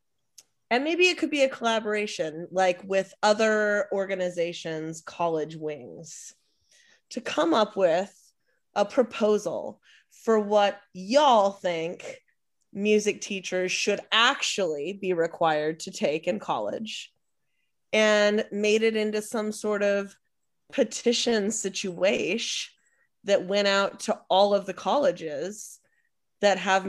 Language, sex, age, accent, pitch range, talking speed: English, female, 20-39, American, 180-220 Hz, 115 wpm